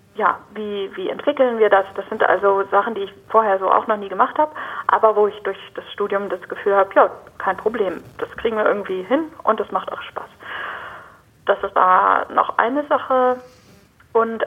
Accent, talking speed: German, 200 wpm